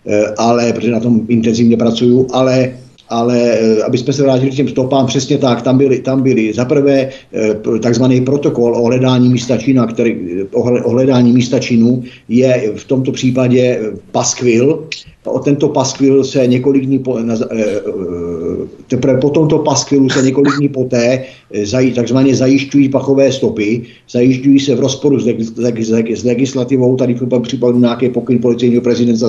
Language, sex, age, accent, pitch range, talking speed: Czech, male, 50-69, native, 120-130 Hz, 150 wpm